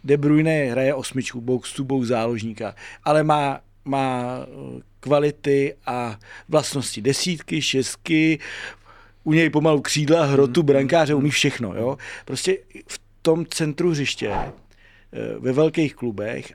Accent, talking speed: native, 120 wpm